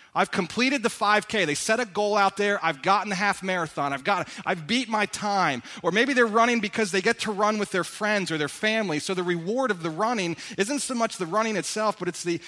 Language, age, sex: English, 30-49, male